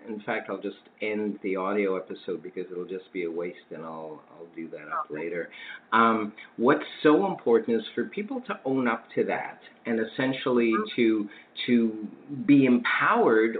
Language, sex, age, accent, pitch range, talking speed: English, male, 50-69, American, 105-125 Hz, 170 wpm